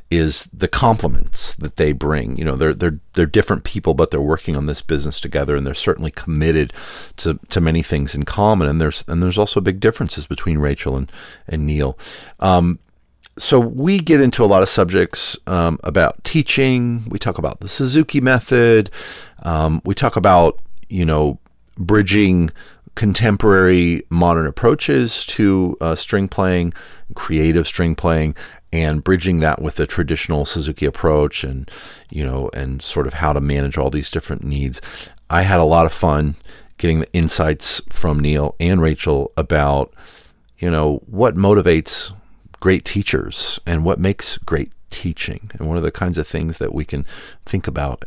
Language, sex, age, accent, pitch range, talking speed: English, male, 40-59, American, 75-95 Hz, 170 wpm